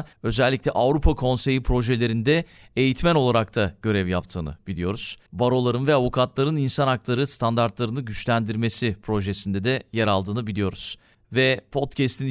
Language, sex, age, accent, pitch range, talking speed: Turkish, male, 40-59, native, 110-140 Hz, 115 wpm